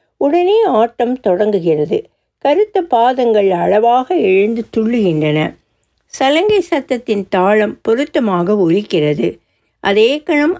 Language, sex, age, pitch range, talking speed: Tamil, female, 60-79, 190-295 Hz, 85 wpm